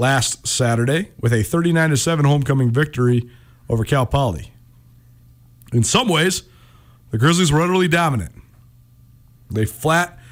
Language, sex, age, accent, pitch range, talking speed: English, male, 40-59, American, 120-145 Hz, 115 wpm